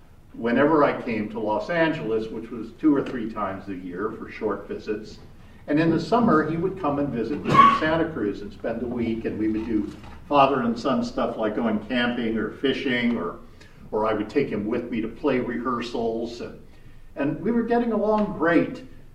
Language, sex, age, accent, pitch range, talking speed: English, male, 50-69, American, 100-160 Hz, 205 wpm